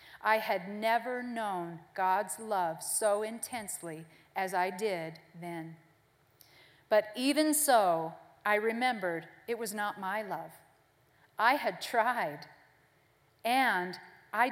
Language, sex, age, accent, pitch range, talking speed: English, female, 40-59, American, 185-245 Hz, 110 wpm